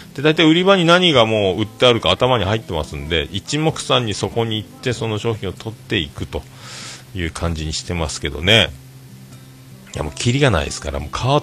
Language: Japanese